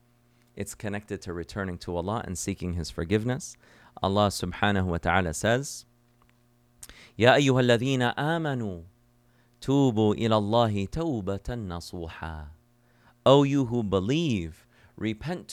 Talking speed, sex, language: 105 wpm, male, English